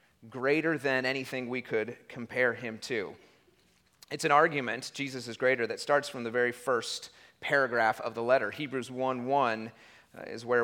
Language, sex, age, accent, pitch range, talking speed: English, male, 30-49, American, 125-150 Hz, 160 wpm